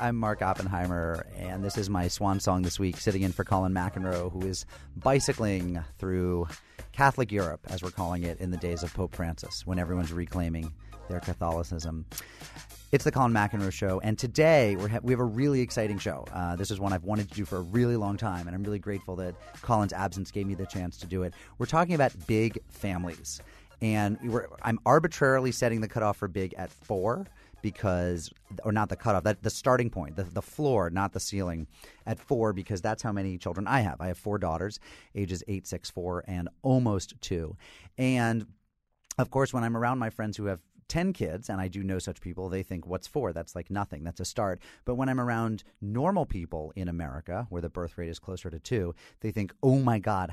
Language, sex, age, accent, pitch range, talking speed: English, male, 30-49, American, 90-110 Hz, 210 wpm